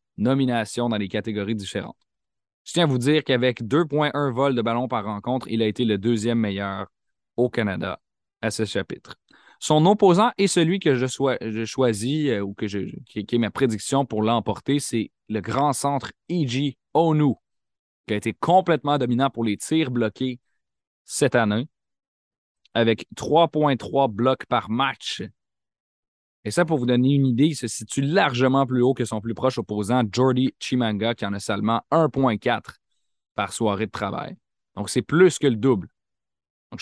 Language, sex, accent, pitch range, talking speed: French, male, Canadian, 110-140 Hz, 170 wpm